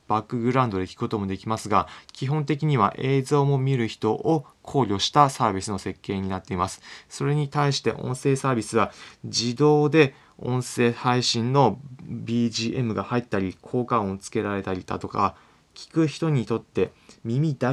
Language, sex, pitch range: Japanese, male, 100-135 Hz